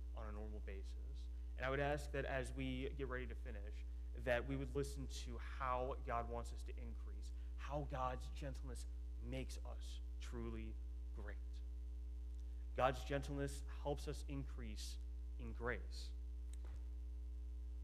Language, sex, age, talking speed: English, male, 30-49, 135 wpm